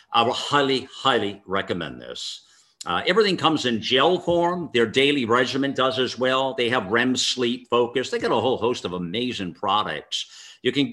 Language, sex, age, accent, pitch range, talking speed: English, male, 50-69, American, 110-145 Hz, 180 wpm